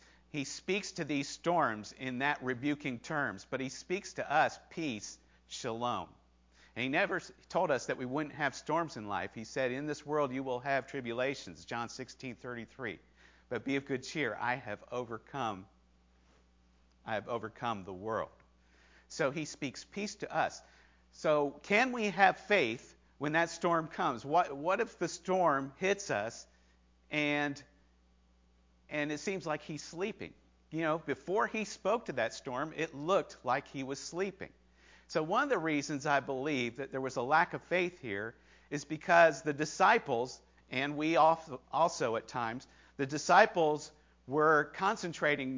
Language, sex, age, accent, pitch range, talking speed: English, male, 50-69, American, 115-155 Hz, 160 wpm